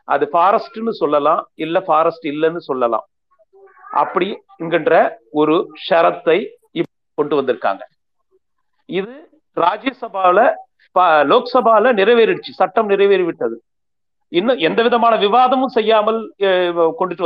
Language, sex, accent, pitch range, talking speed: Tamil, male, native, 185-305 Hz, 80 wpm